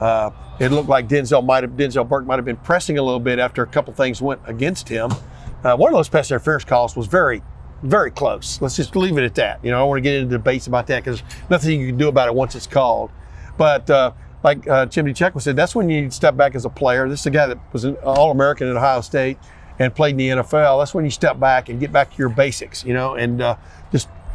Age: 40-59